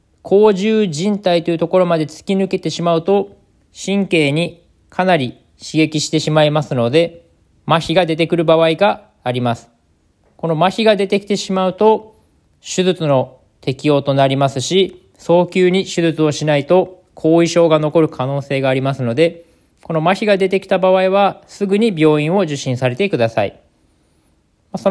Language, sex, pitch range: Japanese, male, 155-190 Hz